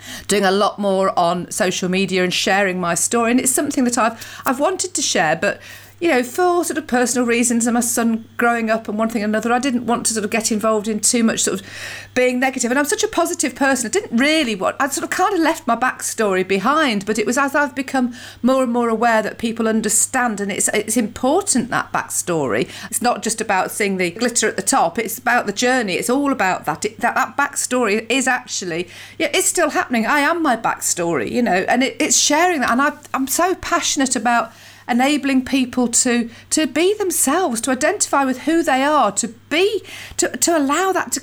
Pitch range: 220-290 Hz